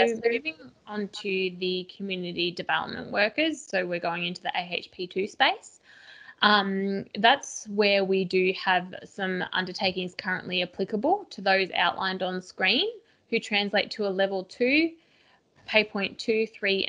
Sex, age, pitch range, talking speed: female, 20-39, 185-225 Hz, 140 wpm